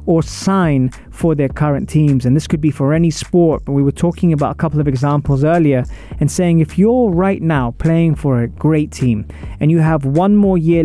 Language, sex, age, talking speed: English, male, 20-39, 220 wpm